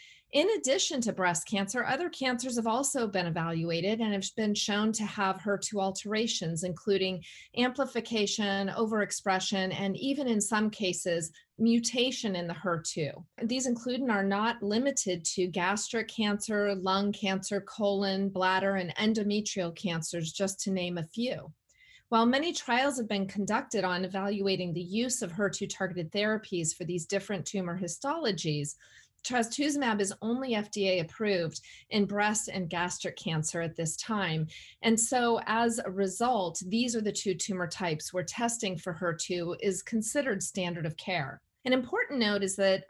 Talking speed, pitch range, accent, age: 150 wpm, 175-225 Hz, American, 30-49